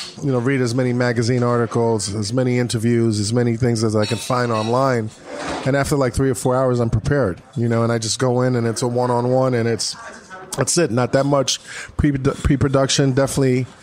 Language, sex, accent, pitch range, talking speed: English, male, American, 120-140 Hz, 220 wpm